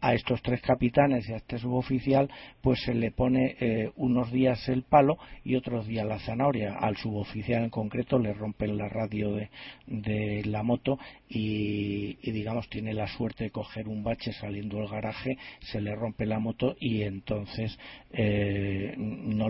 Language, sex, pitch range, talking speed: Spanish, male, 105-120 Hz, 170 wpm